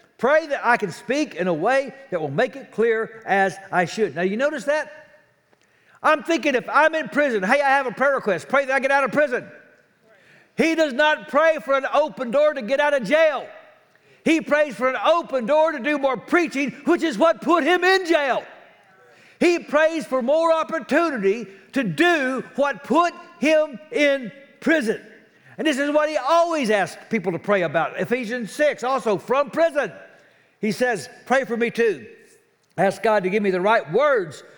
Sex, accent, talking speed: male, American, 195 wpm